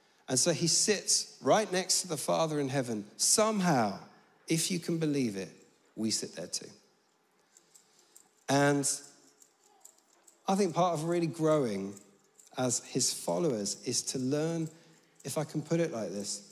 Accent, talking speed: British, 150 wpm